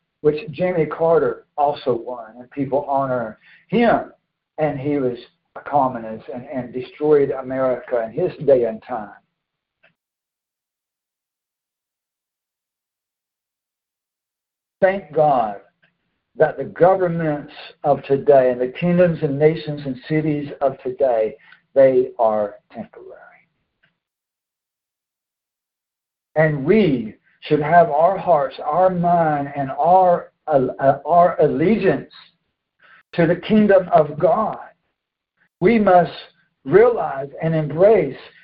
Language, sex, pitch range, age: English, male, 140-180 Hz, 60-79